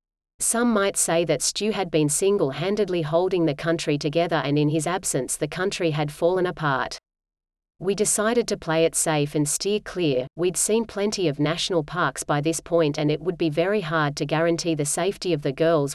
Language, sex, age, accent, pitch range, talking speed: English, female, 40-59, Australian, 155-190 Hz, 195 wpm